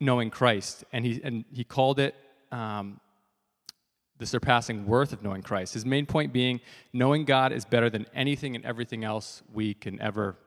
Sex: male